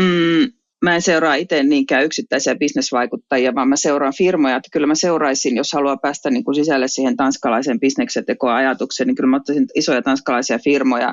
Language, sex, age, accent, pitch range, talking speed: Finnish, female, 30-49, native, 135-175 Hz, 175 wpm